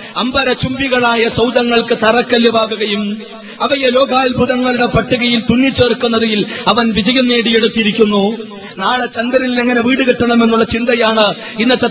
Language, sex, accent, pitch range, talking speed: Malayalam, male, native, 220-245 Hz, 90 wpm